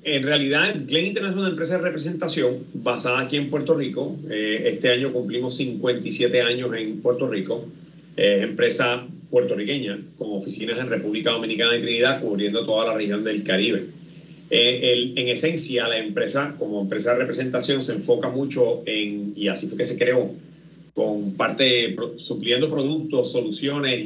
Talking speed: 150 wpm